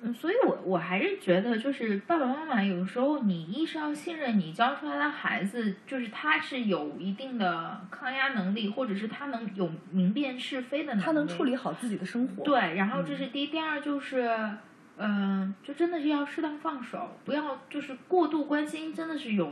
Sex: female